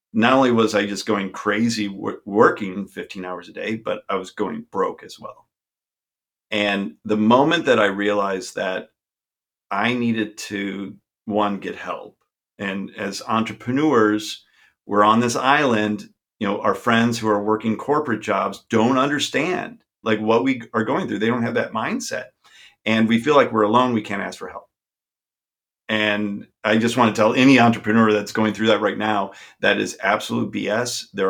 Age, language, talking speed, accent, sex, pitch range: 40-59, English, 175 wpm, American, male, 100-115 Hz